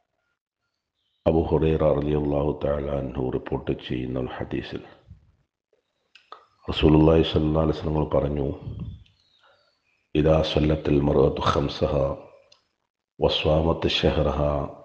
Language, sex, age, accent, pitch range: Malayalam, male, 50-69, native, 70-80 Hz